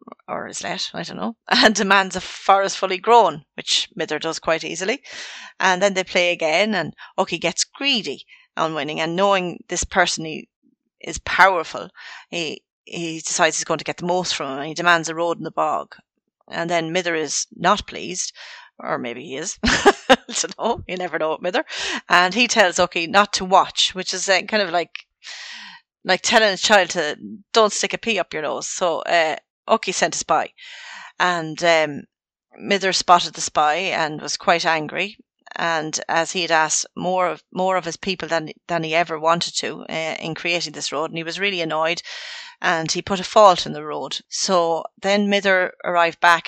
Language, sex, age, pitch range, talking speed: English, female, 30-49, 165-205 Hz, 195 wpm